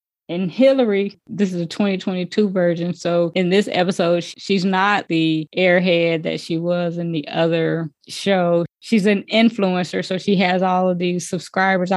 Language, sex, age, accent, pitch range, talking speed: English, female, 20-39, American, 180-205 Hz, 160 wpm